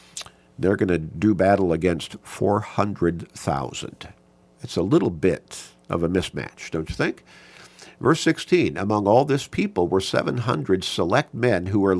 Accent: American